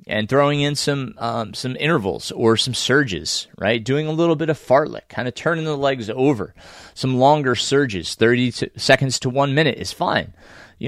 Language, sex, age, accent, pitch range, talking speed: English, male, 30-49, American, 105-135 Hz, 195 wpm